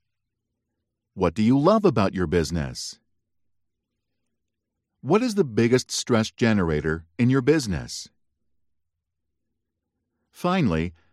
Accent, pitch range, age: American, 105-150 Hz, 50-69